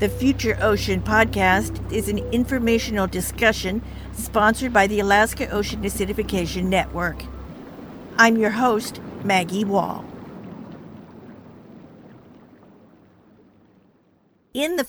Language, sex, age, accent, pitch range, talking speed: English, female, 50-69, American, 185-225 Hz, 90 wpm